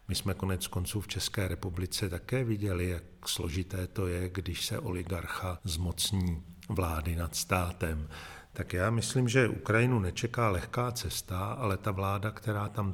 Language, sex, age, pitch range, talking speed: Czech, male, 50-69, 90-105 Hz, 155 wpm